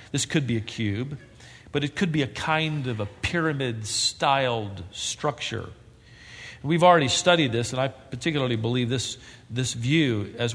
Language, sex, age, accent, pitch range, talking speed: English, male, 50-69, American, 120-160 Hz, 155 wpm